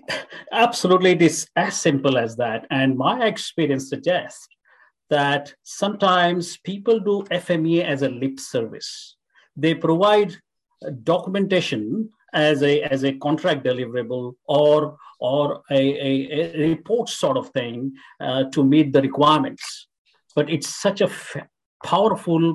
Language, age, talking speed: English, 50-69, 130 wpm